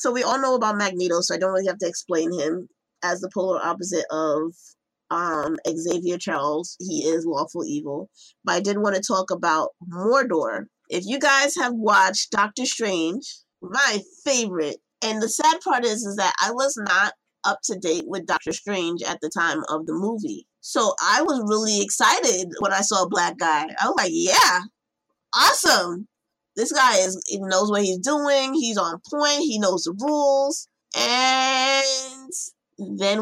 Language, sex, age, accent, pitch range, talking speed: English, female, 20-39, American, 175-260 Hz, 175 wpm